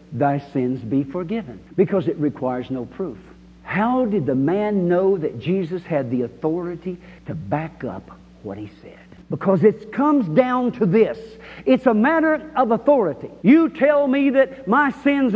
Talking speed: 165 wpm